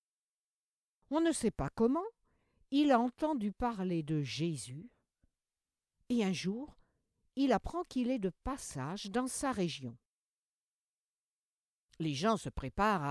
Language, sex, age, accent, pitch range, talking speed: French, female, 60-79, French, 150-240 Hz, 125 wpm